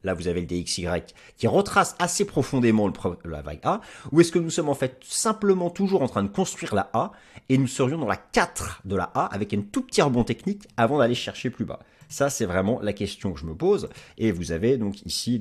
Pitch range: 95-135 Hz